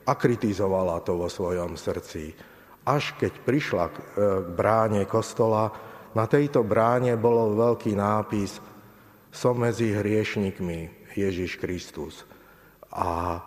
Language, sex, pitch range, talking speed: Slovak, male, 95-110 Hz, 105 wpm